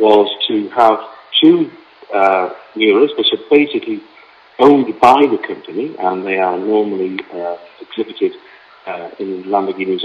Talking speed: 130 wpm